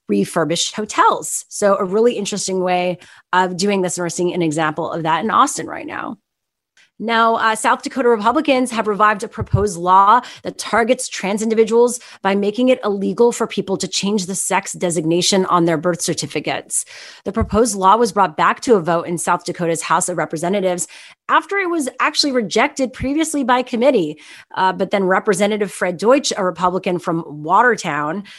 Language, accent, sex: English, American, female